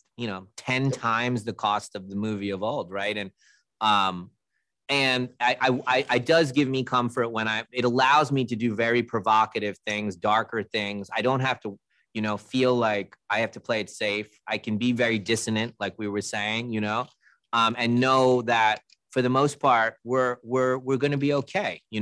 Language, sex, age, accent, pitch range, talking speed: English, male, 30-49, American, 100-120 Hz, 205 wpm